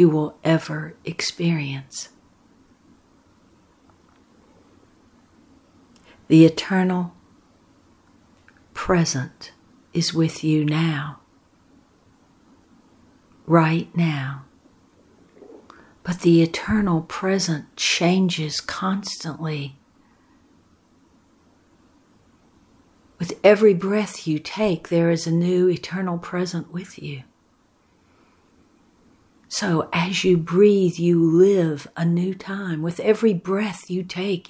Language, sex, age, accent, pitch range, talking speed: English, female, 60-79, American, 165-190 Hz, 80 wpm